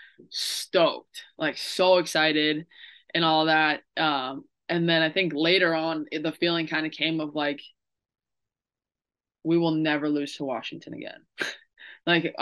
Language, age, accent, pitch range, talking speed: English, 20-39, American, 150-175 Hz, 140 wpm